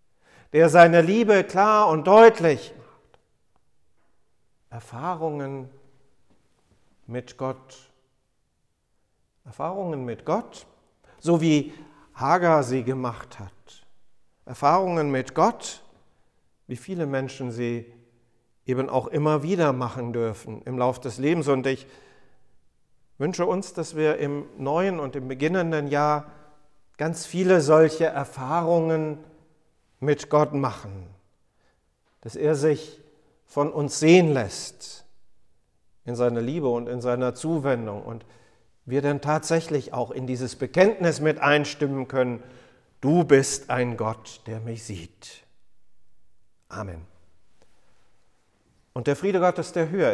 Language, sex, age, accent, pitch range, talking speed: German, male, 50-69, German, 120-155 Hz, 110 wpm